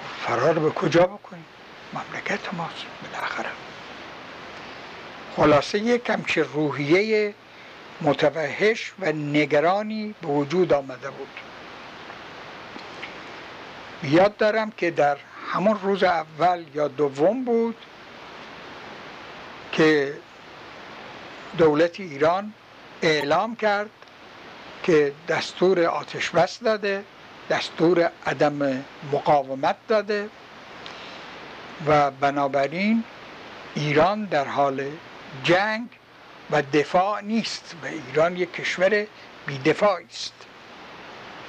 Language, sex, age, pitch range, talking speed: Persian, male, 60-79, 145-200 Hz, 80 wpm